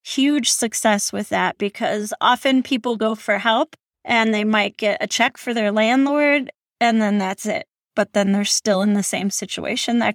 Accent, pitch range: American, 210-245 Hz